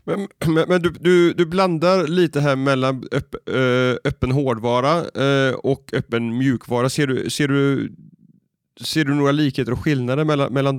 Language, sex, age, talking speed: Swedish, male, 30-49, 165 wpm